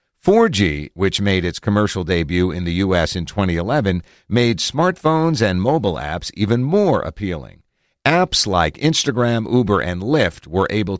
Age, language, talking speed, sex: 50-69, English, 145 wpm, male